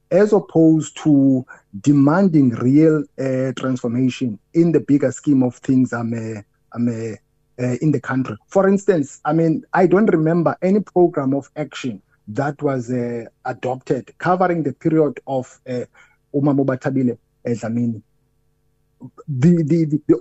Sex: male